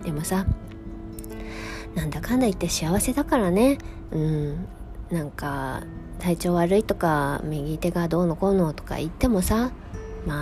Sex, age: female, 20-39